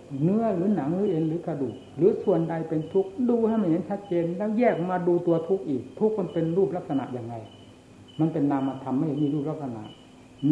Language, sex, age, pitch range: Thai, male, 60-79, 135-180 Hz